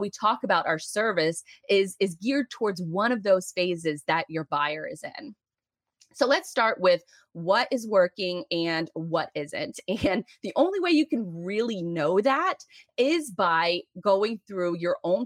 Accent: American